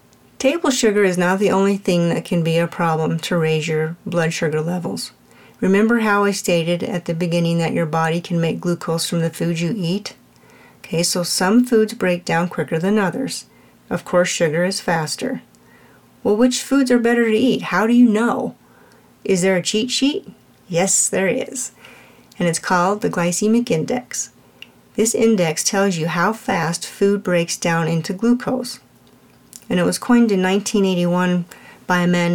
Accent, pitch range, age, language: American, 170-210 Hz, 50-69, English